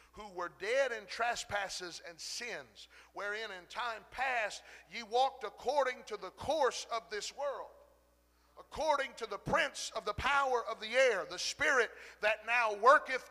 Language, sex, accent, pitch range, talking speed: English, male, American, 155-250 Hz, 160 wpm